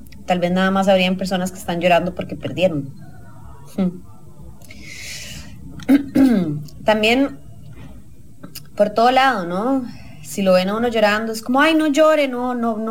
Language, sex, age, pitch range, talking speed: English, female, 20-39, 170-240 Hz, 140 wpm